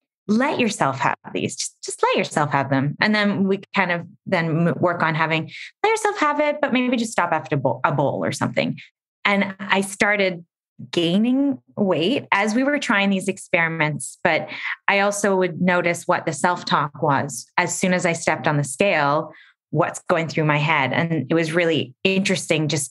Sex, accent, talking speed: female, American, 190 wpm